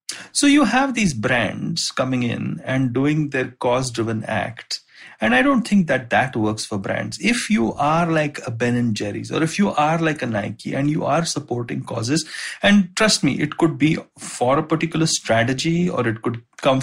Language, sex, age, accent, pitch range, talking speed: English, male, 30-49, Indian, 130-180 Hz, 195 wpm